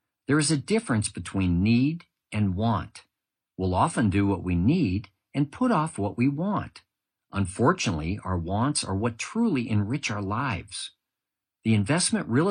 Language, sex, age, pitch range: Thai, male, 50-69, 100-140 Hz